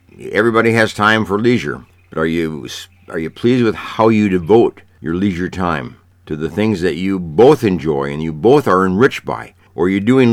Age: 60-79